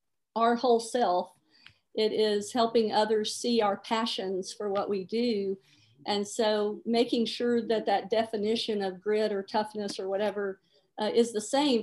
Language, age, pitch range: English, 50-69, 205-235 Hz